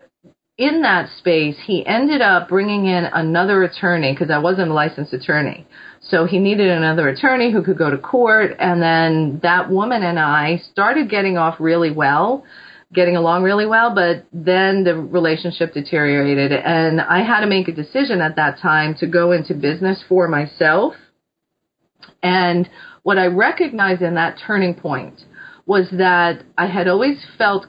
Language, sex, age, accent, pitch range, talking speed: English, female, 40-59, American, 160-195 Hz, 165 wpm